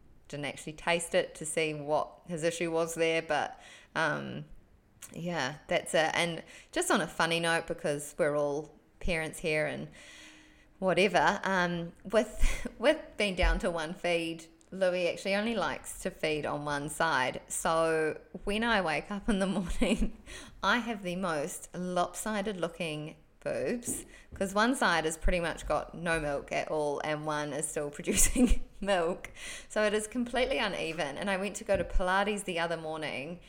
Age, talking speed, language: 20-39, 165 wpm, English